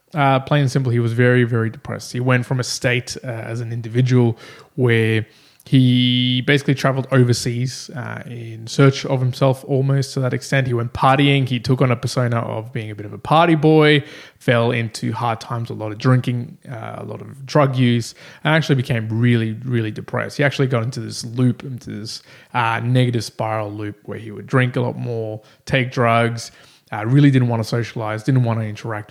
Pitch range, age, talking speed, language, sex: 115-135 Hz, 20-39, 205 wpm, English, male